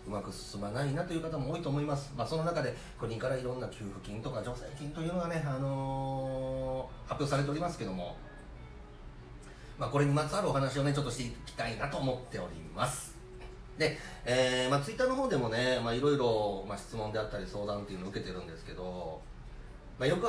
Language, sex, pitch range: Japanese, male, 110-155 Hz